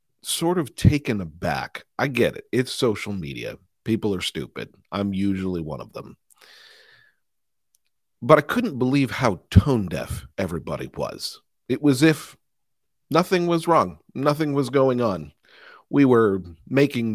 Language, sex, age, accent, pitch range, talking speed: English, male, 40-59, American, 100-140 Hz, 145 wpm